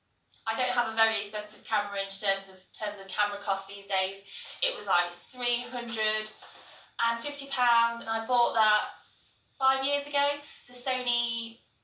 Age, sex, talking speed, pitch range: 20-39, female, 155 wpm, 195-240 Hz